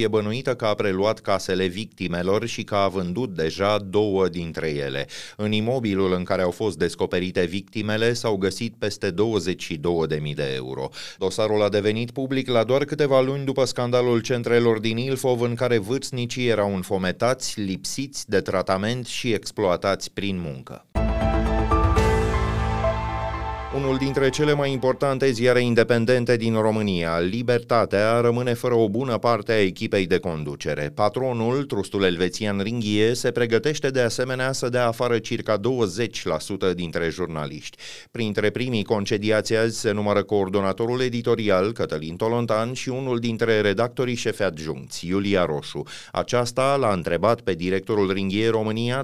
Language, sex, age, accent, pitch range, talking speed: Romanian, male, 30-49, native, 100-125 Hz, 140 wpm